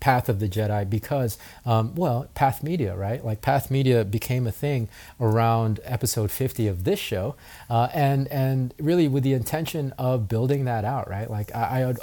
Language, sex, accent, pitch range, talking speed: English, male, American, 105-130 Hz, 190 wpm